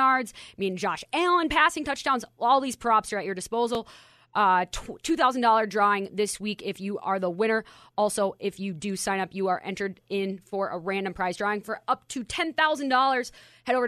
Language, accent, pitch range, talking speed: English, American, 195-235 Hz, 190 wpm